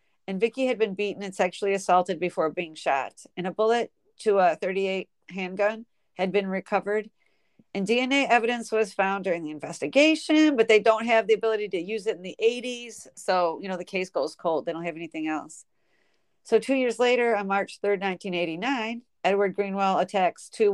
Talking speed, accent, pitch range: 190 wpm, American, 185-225 Hz